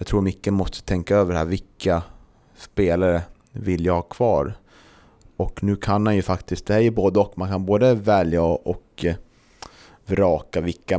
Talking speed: 175 wpm